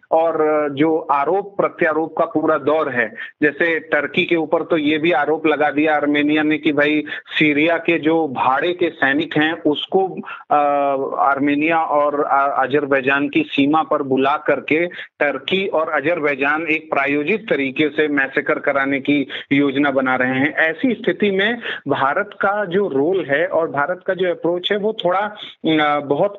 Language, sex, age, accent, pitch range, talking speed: Hindi, male, 30-49, native, 145-180 Hz, 155 wpm